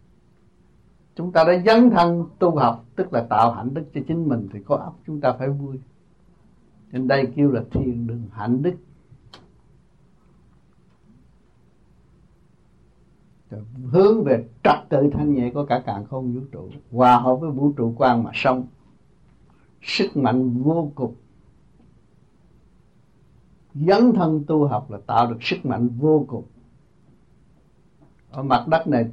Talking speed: 140 wpm